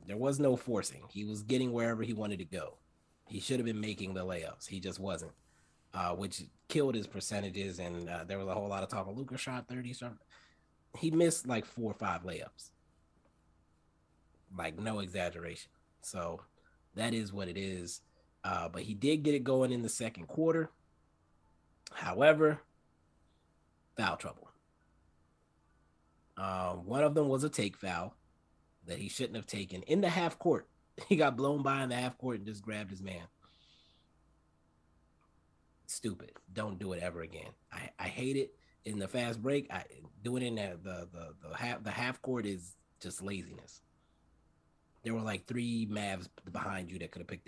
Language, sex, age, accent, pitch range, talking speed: English, male, 30-49, American, 80-120 Hz, 175 wpm